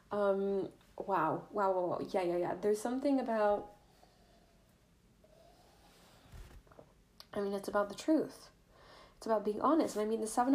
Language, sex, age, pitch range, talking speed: English, female, 10-29, 200-270 Hz, 150 wpm